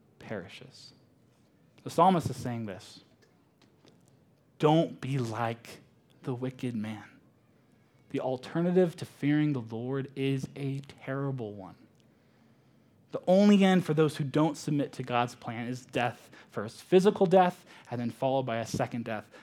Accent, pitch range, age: American, 115-145 Hz, 20-39